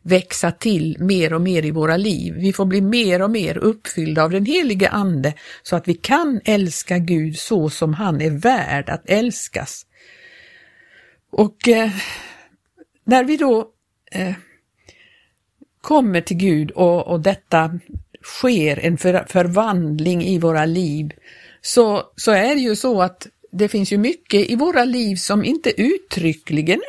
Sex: female